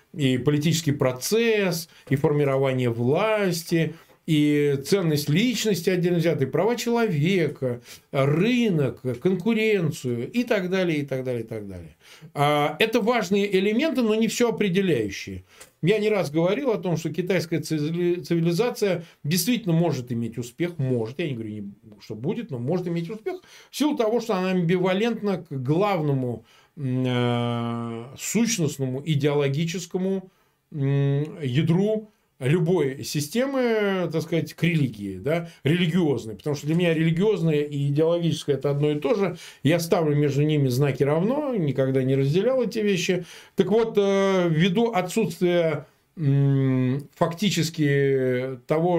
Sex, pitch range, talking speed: male, 140-190 Hz, 125 wpm